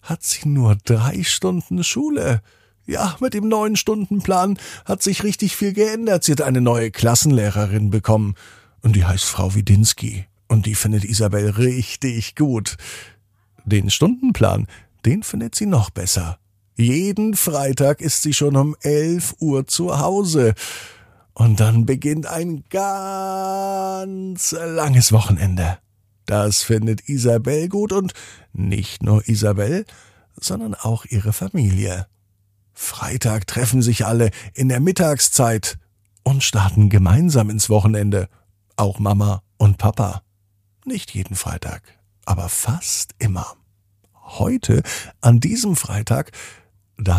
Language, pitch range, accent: German, 100-155 Hz, German